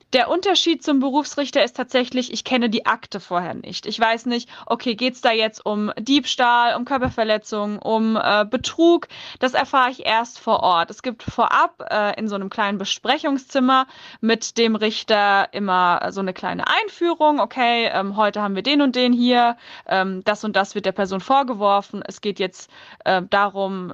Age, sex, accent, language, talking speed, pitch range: 20-39, female, German, German, 180 wpm, 205-275 Hz